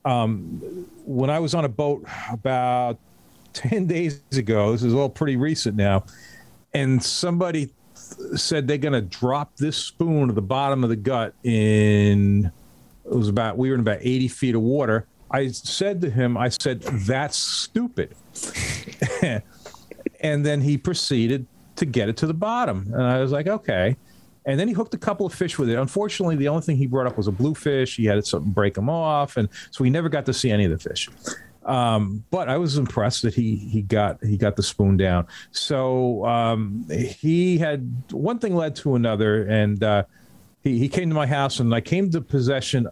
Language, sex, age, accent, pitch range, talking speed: English, male, 40-59, American, 105-140 Hz, 195 wpm